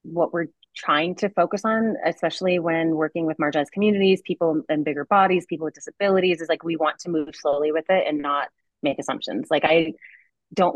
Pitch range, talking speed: 150-180 Hz, 195 wpm